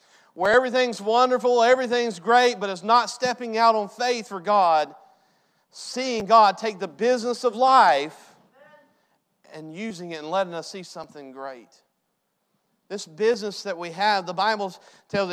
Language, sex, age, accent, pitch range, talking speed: English, male, 40-59, American, 180-225 Hz, 150 wpm